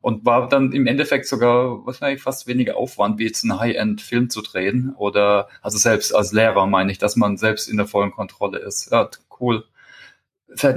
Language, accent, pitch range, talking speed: German, German, 110-135 Hz, 190 wpm